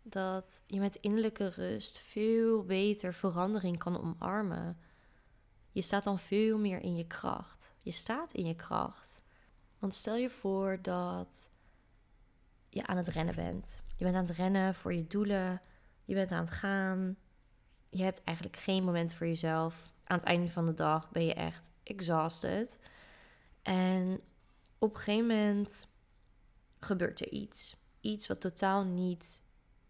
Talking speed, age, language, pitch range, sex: 150 wpm, 20-39, Dutch, 165-195 Hz, female